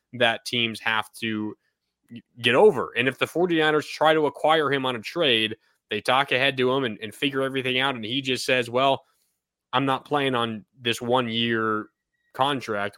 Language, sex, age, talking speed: English, male, 20-39, 185 wpm